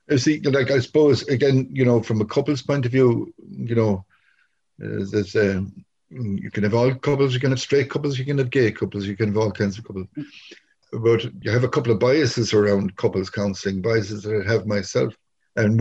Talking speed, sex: 210 wpm, male